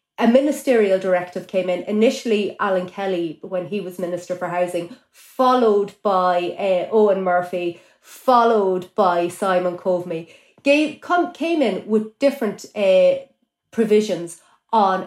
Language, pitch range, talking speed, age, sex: English, 180-235 Hz, 120 wpm, 30-49, female